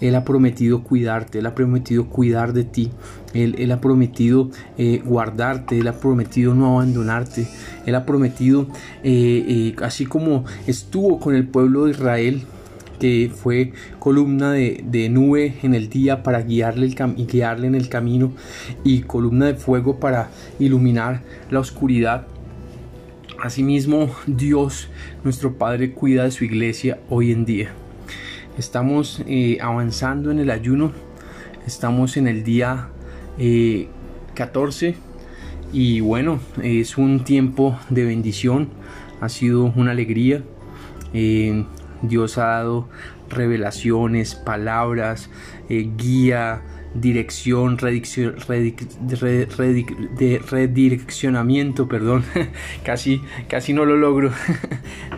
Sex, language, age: male, Spanish, 30-49